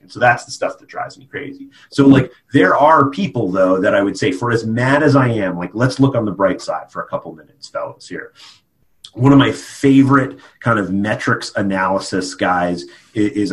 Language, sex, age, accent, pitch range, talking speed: English, male, 30-49, American, 95-135 Hz, 215 wpm